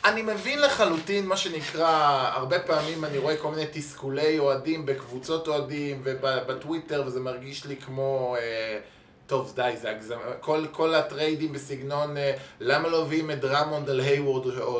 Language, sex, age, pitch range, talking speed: Hebrew, male, 20-39, 125-160 Hz, 145 wpm